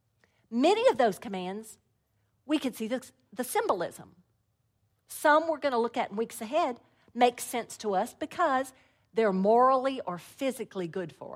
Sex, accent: female, American